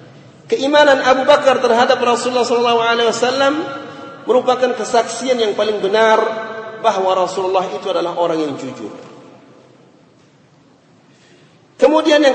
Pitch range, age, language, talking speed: 230-270 Hz, 40-59, Malay, 95 wpm